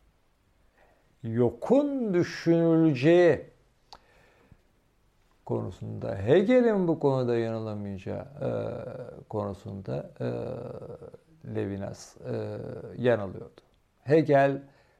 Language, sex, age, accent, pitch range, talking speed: Turkish, male, 50-69, native, 105-140 Hz, 55 wpm